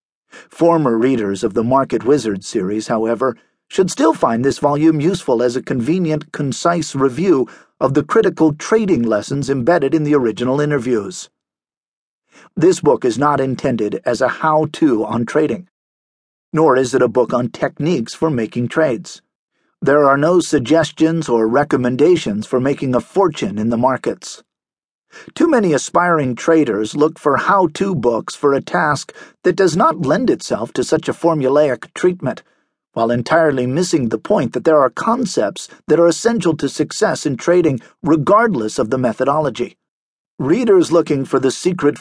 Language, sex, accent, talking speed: English, male, American, 155 wpm